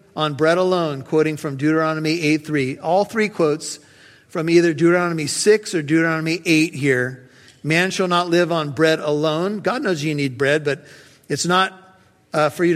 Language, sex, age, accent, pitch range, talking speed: English, male, 50-69, American, 145-175 Hz, 170 wpm